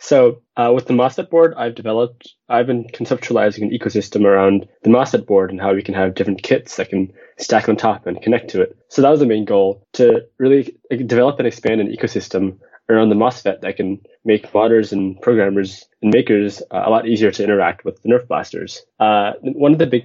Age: 20-39